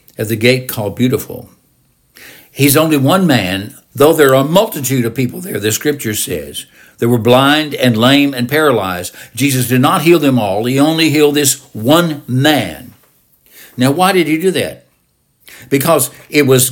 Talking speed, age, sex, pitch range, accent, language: 170 wpm, 60-79, male, 115-150 Hz, American, English